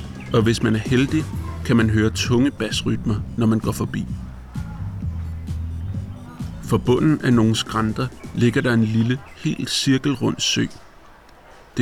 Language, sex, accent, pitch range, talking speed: Danish, male, native, 105-130 Hz, 135 wpm